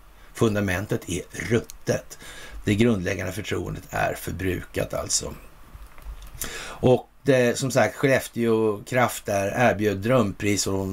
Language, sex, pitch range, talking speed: Swedish, male, 100-135 Hz, 110 wpm